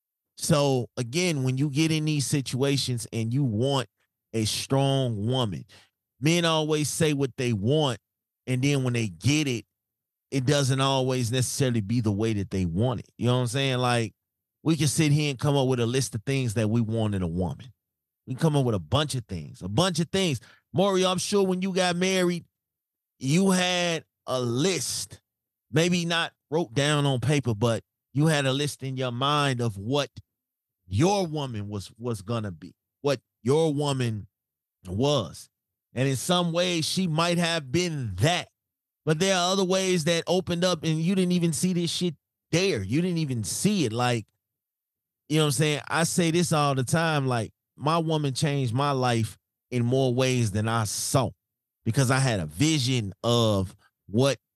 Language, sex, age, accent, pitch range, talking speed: English, male, 30-49, American, 115-160 Hz, 190 wpm